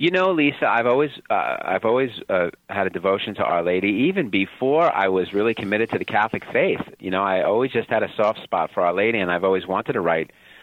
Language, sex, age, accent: English, male, 40-59, American